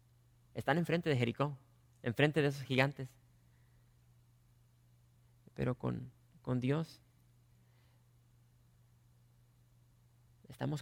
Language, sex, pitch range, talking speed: English, male, 120-135 Hz, 70 wpm